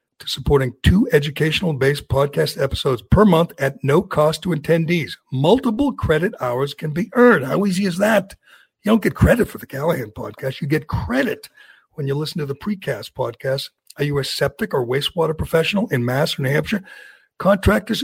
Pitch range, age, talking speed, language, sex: 135-180 Hz, 60-79, 180 wpm, English, male